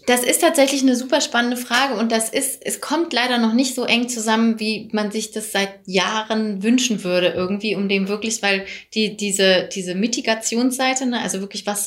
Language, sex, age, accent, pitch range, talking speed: German, female, 20-39, German, 200-235 Hz, 195 wpm